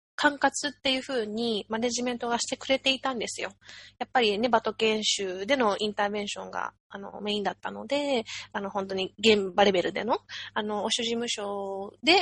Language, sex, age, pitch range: Japanese, female, 20-39, 210-275 Hz